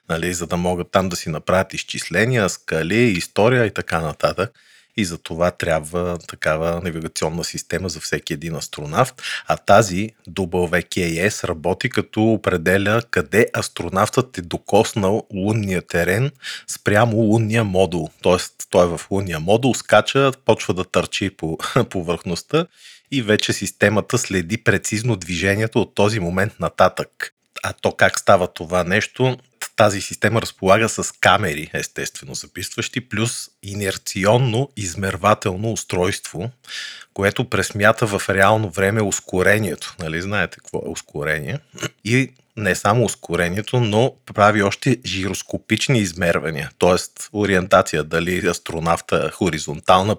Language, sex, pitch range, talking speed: Bulgarian, male, 90-110 Hz, 125 wpm